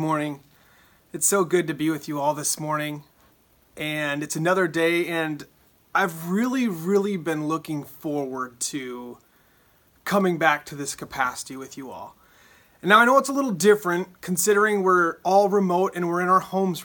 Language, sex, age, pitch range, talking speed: English, male, 30-49, 160-205 Hz, 170 wpm